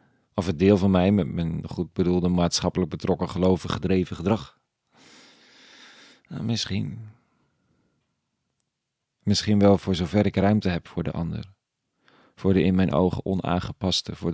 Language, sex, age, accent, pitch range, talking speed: Dutch, male, 40-59, Dutch, 85-100 Hz, 140 wpm